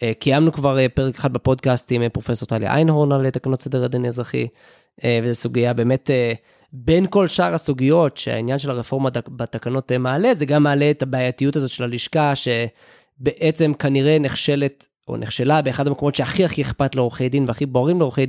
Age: 20-39